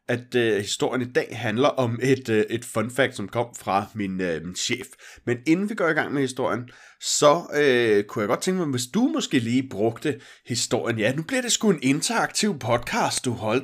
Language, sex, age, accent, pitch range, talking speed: Danish, male, 30-49, native, 115-165 Hz, 220 wpm